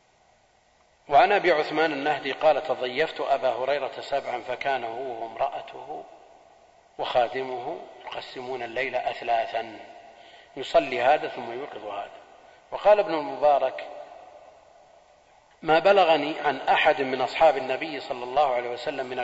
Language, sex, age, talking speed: Arabic, male, 40-59, 110 wpm